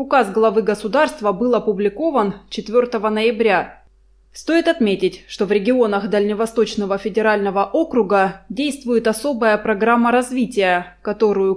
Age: 20-39